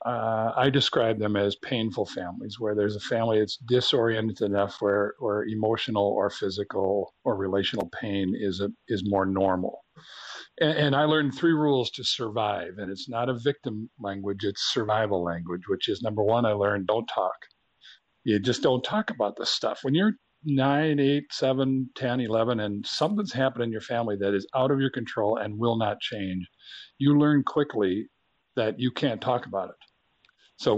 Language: English